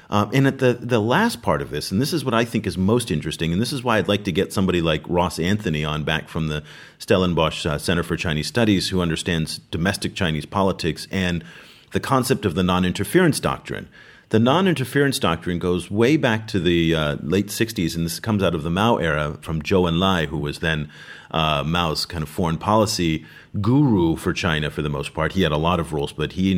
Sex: male